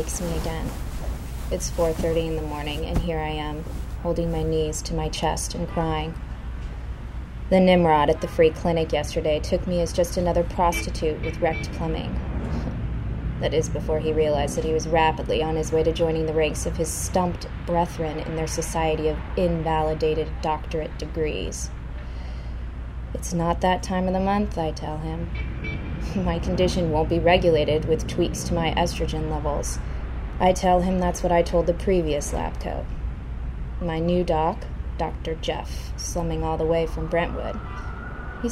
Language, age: English, 20-39